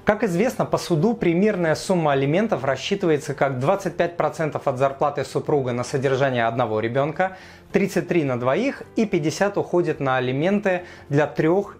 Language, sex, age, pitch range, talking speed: Russian, male, 30-49, 140-185 Hz, 135 wpm